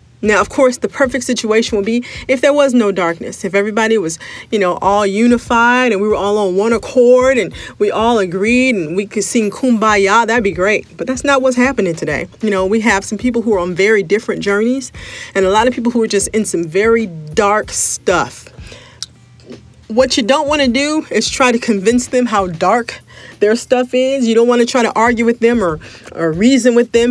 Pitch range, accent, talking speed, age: 200-250 Hz, American, 220 wpm, 40-59